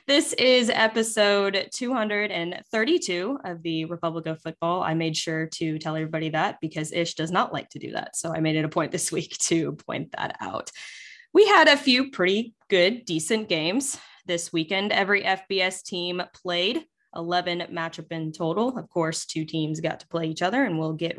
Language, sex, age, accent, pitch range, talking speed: English, female, 20-39, American, 165-225 Hz, 185 wpm